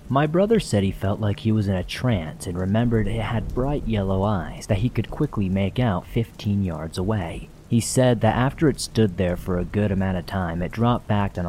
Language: English